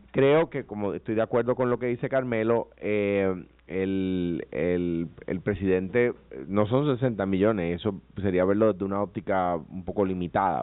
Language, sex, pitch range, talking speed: Spanish, male, 100-155 Hz, 165 wpm